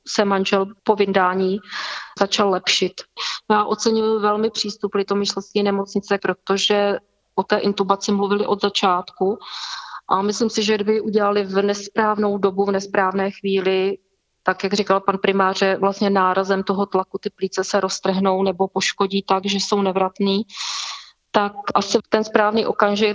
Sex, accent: female, native